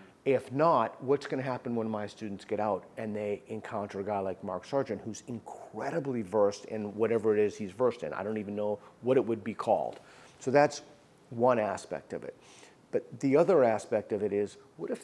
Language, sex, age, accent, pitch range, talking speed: English, male, 40-59, American, 105-130 Hz, 210 wpm